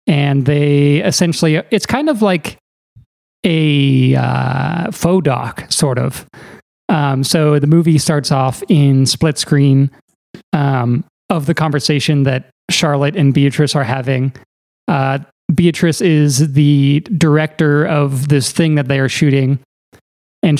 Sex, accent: male, American